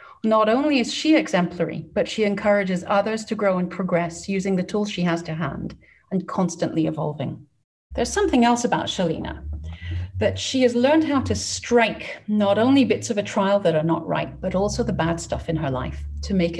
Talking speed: 200 wpm